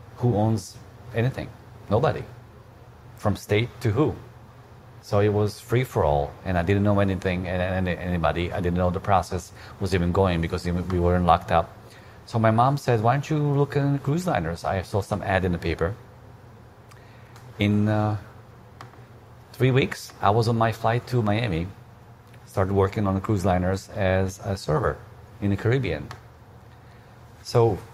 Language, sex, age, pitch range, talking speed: English, male, 40-59, 95-120 Hz, 165 wpm